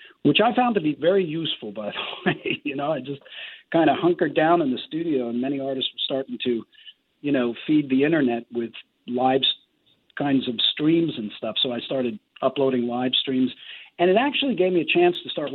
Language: English